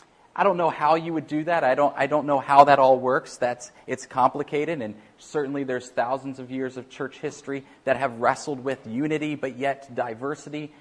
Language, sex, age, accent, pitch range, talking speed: English, male, 30-49, American, 125-155 Hz, 205 wpm